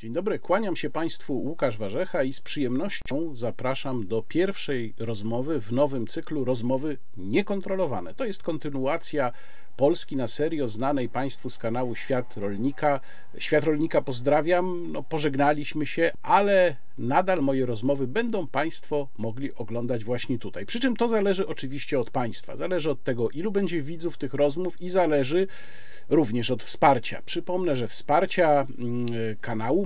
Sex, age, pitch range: male, 50-69, 120-165 Hz